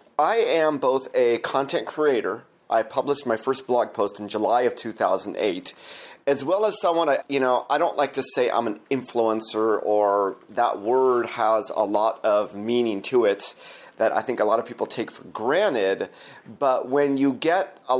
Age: 30-49